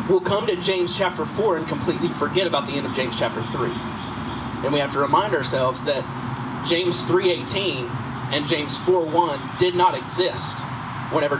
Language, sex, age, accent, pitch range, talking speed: English, male, 30-49, American, 130-180 Hz, 170 wpm